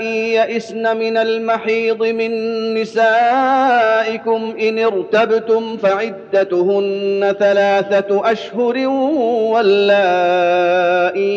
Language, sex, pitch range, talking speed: Arabic, male, 185-225 Hz, 60 wpm